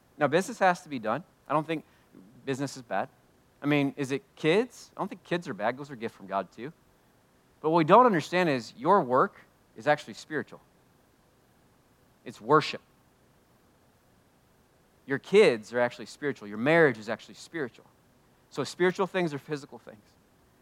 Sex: male